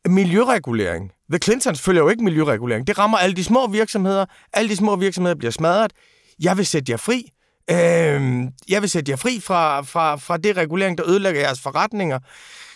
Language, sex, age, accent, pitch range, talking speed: Danish, male, 30-49, native, 170-215 Hz, 185 wpm